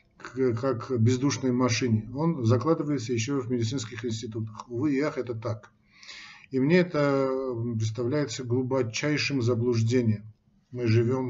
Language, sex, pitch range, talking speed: Russian, male, 115-135 Hz, 110 wpm